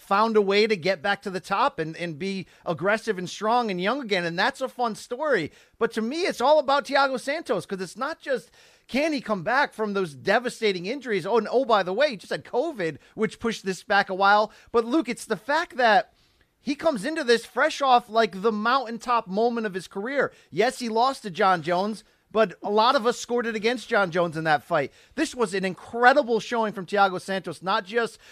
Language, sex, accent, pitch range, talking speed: English, male, American, 190-245 Hz, 225 wpm